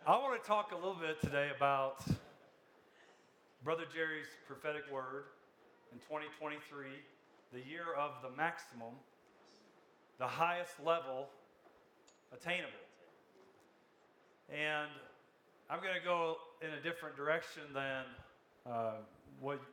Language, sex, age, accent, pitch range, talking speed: English, male, 40-59, American, 130-155 Hz, 110 wpm